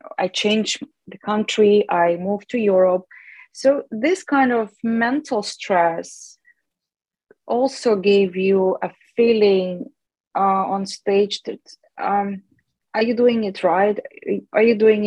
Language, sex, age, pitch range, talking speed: English, female, 20-39, 195-235 Hz, 125 wpm